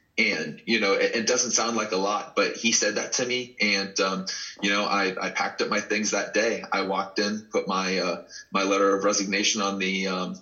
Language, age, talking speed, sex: English, 30-49, 235 wpm, male